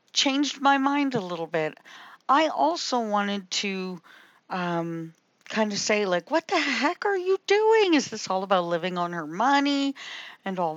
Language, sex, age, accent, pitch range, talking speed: English, female, 50-69, American, 185-250 Hz, 175 wpm